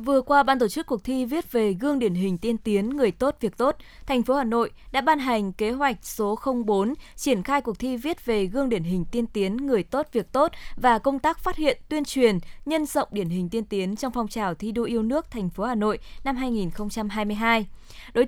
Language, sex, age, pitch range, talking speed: Vietnamese, female, 20-39, 210-275 Hz, 235 wpm